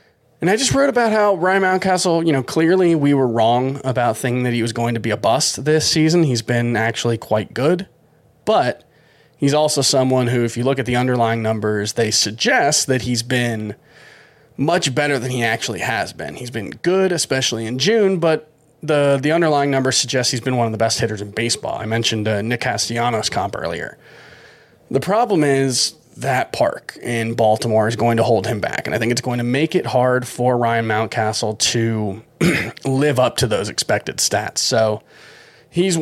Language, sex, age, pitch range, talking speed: English, male, 30-49, 115-145 Hz, 195 wpm